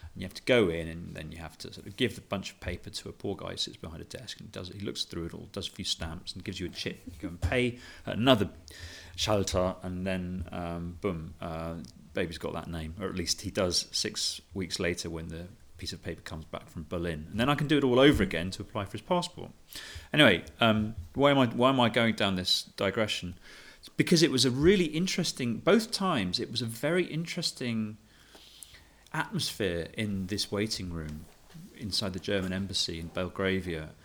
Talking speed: 225 wpm